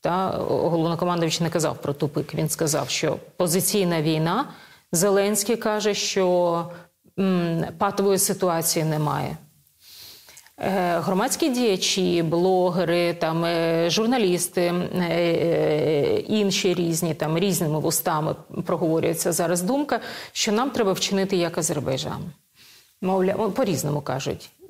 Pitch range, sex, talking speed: 165-205 Hz, female, 105 wpm